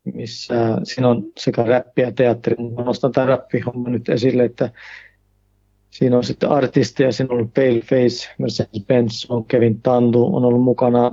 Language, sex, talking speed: Finnish, male, 160 wpm